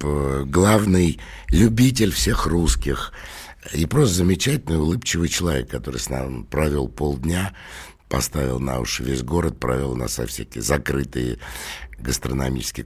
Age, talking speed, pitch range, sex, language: 60-79, 110 wpm, 65-85 Hz, male, Russian